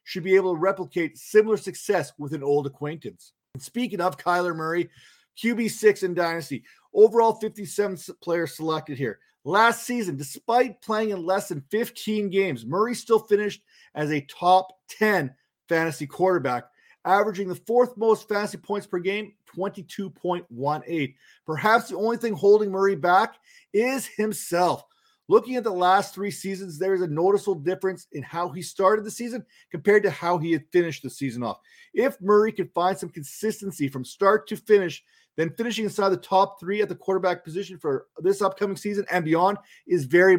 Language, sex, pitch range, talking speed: English, male, 170-210 Hz, 170 wpm